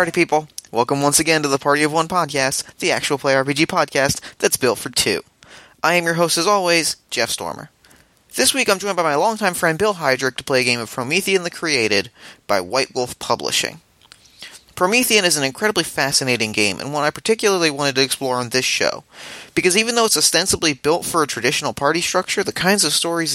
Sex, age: male, 30-49